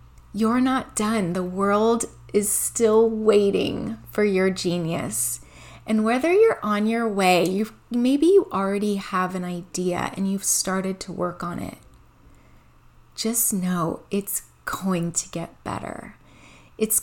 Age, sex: 30-49, female